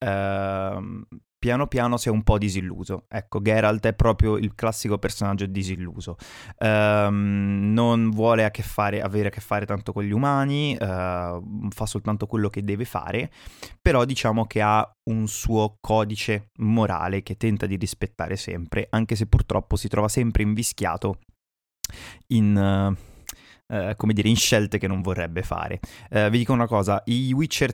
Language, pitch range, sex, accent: Italian, 100-115 Hz, male, native